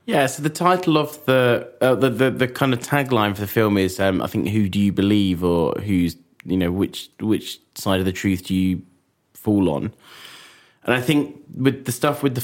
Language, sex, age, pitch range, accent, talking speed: English, male, 20-39, 95-120 Hz, British, 220 wpm